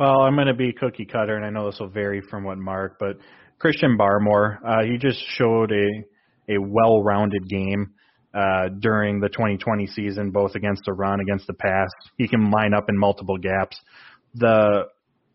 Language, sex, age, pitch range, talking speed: English, male, 30-49, 100-115 Hz, 190 wpm